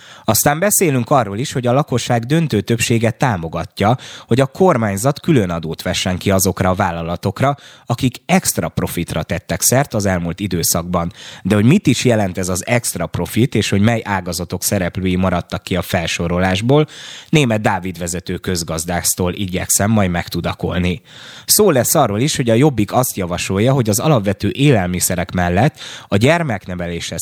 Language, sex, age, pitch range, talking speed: Hungarian, male, 20-39, 90-125 Hz, 155 wpm